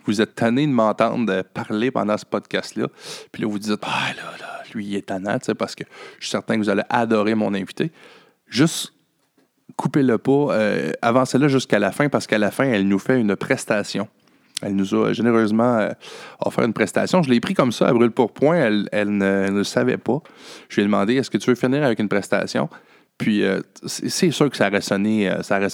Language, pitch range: French, 100-115 Hz